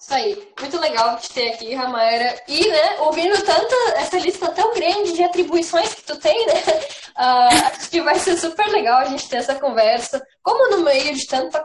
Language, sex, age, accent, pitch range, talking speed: Portuguese, female, 10-29, Brazilian, 225-305 Hz, 195 wpm